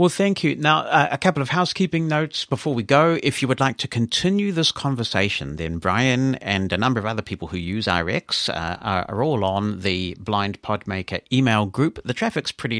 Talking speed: 210 wpm